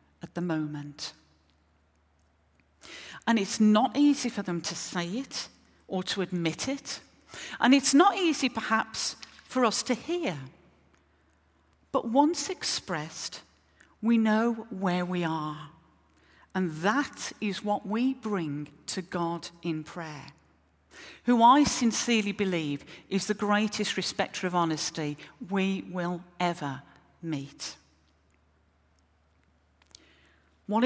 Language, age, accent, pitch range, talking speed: English, 40-59, British, 140-235 Hz, 115 wpm